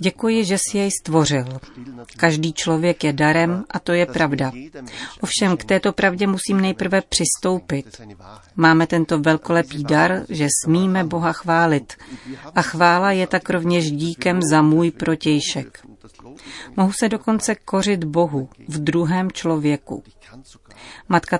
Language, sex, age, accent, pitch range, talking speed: Czech, female, 40-59, native, 150-180 Hz, 130 wpm